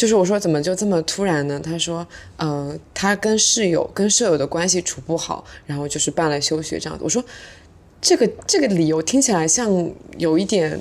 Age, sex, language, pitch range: 20-39, female, Chinese, 160-200 Hz